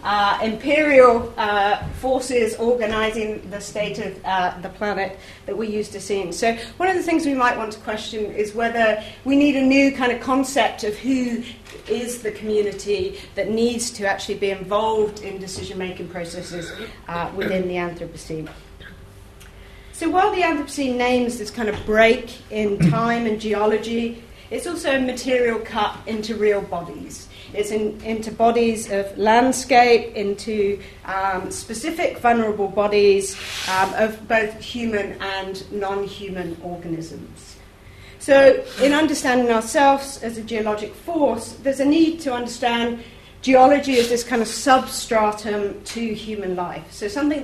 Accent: British